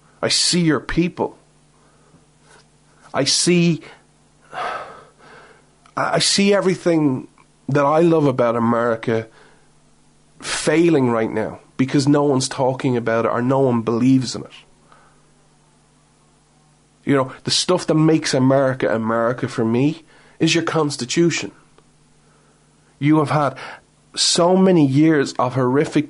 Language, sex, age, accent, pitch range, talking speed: English, male, 30-49, Irish, 115-145 Hz, 115 wpm